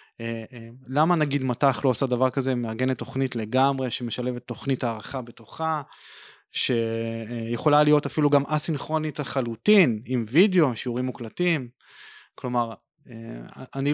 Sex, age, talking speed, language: male, 20-39, 115 wpm, Hebrew